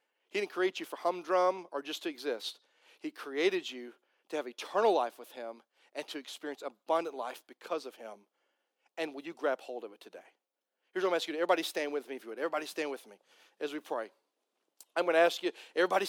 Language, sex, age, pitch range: English, male, 40-59, 150-190 Hz